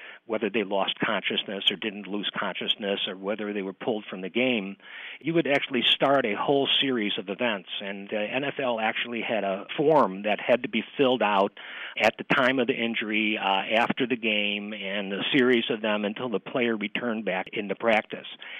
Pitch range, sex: 105-130 Hz, male